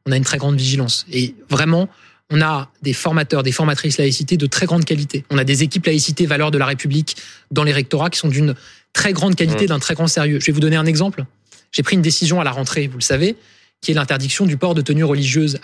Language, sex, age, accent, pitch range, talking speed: French, male, 20-39, French, 145-180 Hz, 245 wpm